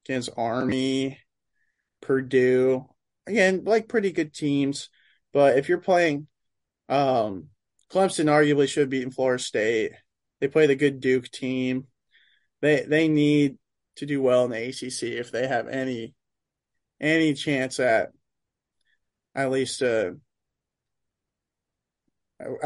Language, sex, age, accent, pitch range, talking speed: English, male, 20-39, American, 125-145 Hz, 115 wpm